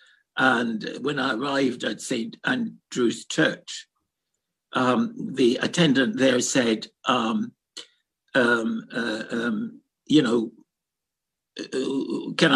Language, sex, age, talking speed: English, male, 60-79, 95 wpm